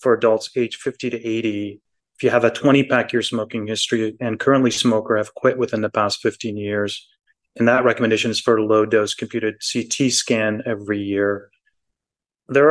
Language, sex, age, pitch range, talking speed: English, male, 30-49, 115-135 Hz, 175 wpm